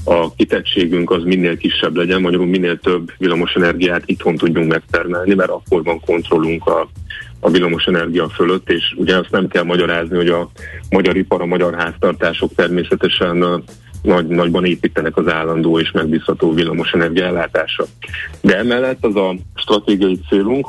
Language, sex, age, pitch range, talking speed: Hungarian, male, 30-49, 85-95 Hz, 140 wpm